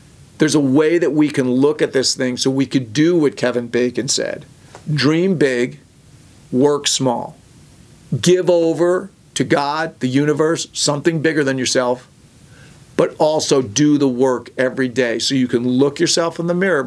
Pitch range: 130-155 Hz